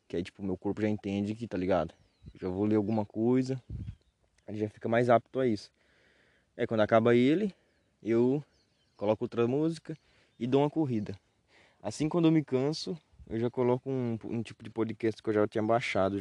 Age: 20-39